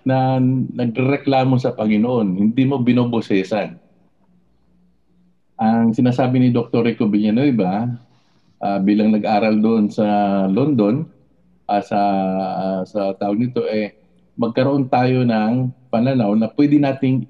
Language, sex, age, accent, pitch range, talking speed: Filipino, male, 50-69, native, 110-150 Hz, 115 wpm